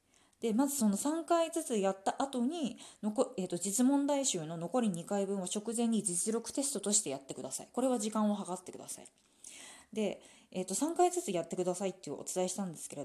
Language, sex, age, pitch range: Japanese, female, 20-39, 175-245 Hz